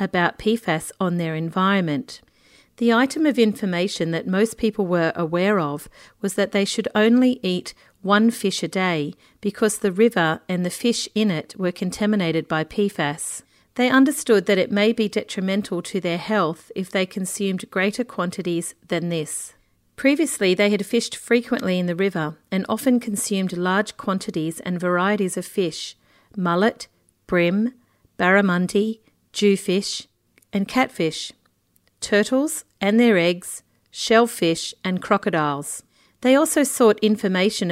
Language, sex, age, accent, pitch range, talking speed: English, female, 40-59, Australian, 175-225 Hz, 140 wpm